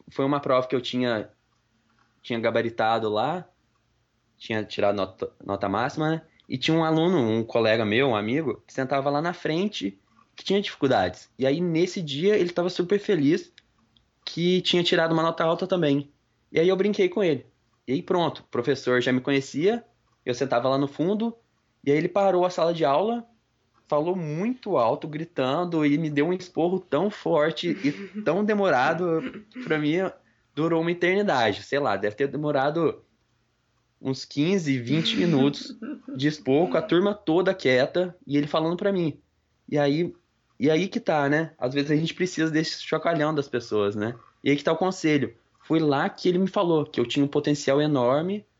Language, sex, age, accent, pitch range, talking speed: Portuguese, male, 20-39, Brazilian, 130-180 Hz, 185 wpm